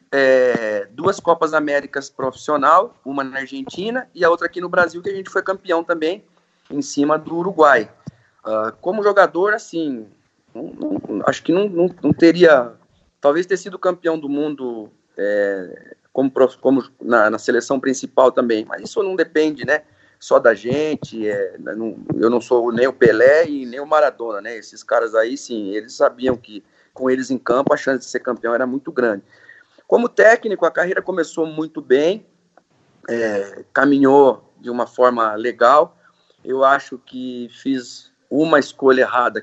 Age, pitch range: 40-59, 125-170 Hz